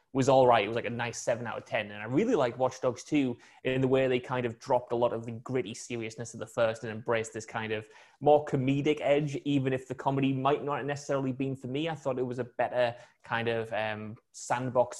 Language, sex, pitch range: English, male, 120-140 Hz